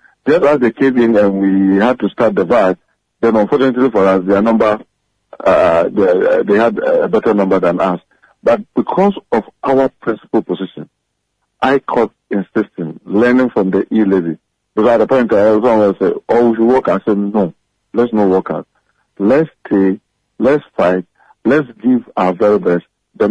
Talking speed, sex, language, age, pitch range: 175 wpm, male, English, 50-69, 95-130 Hz